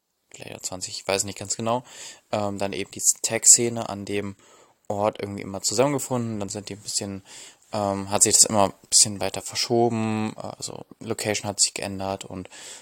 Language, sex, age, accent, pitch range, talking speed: German, male, 20-39, German, 95-110 Hz, 180 wpm